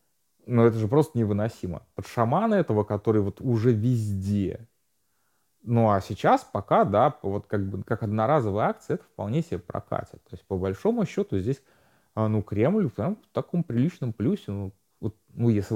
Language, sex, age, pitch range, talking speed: Russian, male, 30-49, 100-130 Hz, 170 wpm